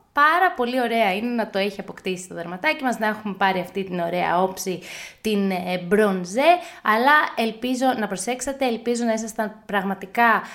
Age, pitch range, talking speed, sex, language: 20-39, 195-255 Hz, 165 wpm, female, Greek